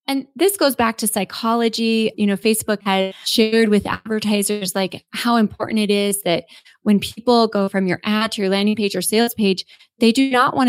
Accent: American